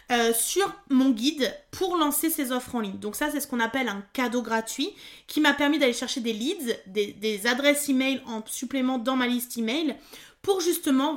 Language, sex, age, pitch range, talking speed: French, female, 20-39, 235-290 Hz, 205 wpm